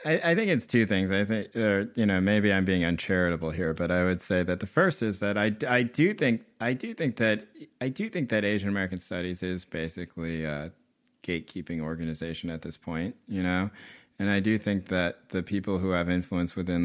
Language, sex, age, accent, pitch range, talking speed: English, male, 20-39, American, 80-100 Hz, 215 wpm